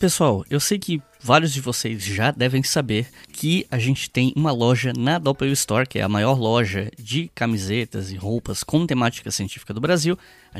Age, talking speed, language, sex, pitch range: 10-29, 190 wpm, Portuguese, male, 115-160 Hz